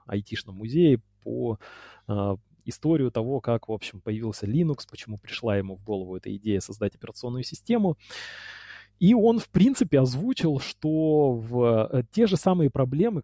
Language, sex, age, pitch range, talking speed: Russian, male, 20-39, 115-160 Hz, 150 wpm